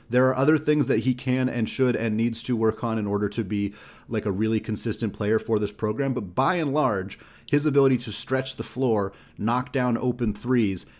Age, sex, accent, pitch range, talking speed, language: 30-49, male, American, 105-130 Hz, 220 wpm, English